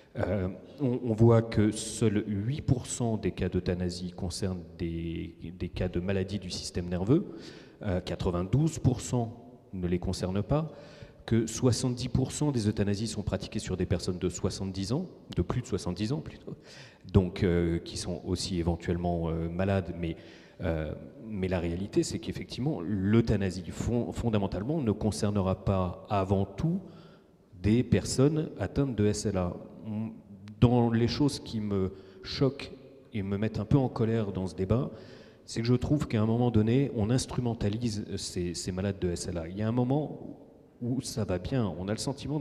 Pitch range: 95-125 Hz